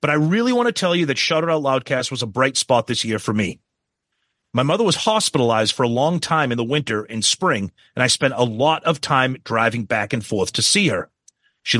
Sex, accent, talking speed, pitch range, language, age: male, American, 240 wpm, 125-180 Hz, English, 30-49